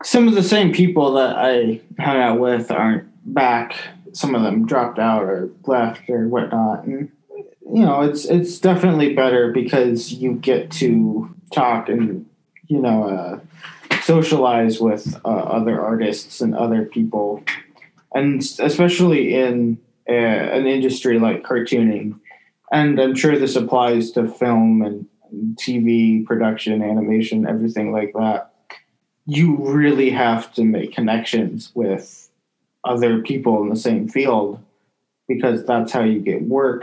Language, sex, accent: English, male, American